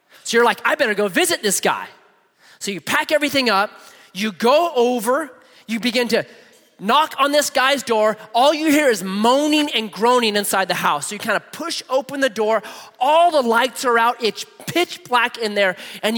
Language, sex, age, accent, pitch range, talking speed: English, male, 30-49, American, 220-320 Hz, 200 wpm